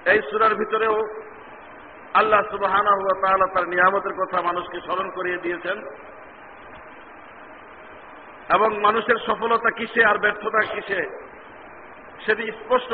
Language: Bengali